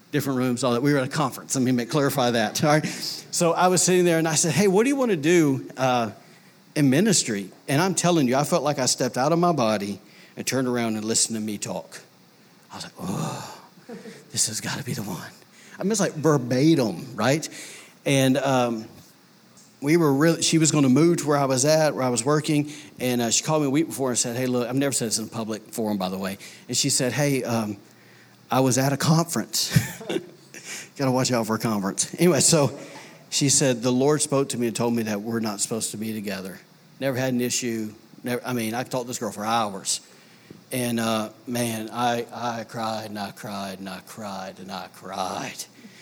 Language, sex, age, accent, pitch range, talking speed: English, male, 40-59, American, 115-150 Hz, 230 wpm